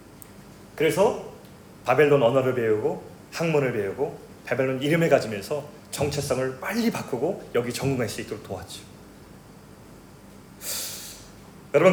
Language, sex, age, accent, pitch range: Korean, male, 30-49, native, 145-220 Hz